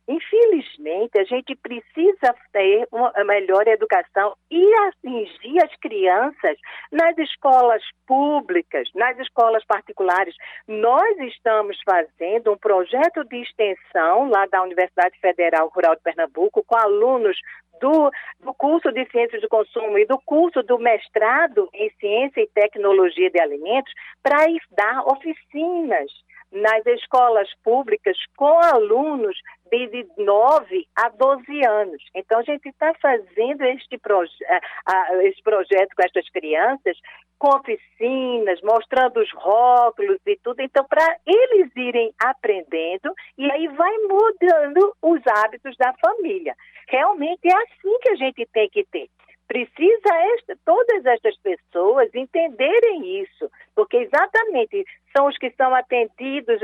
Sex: female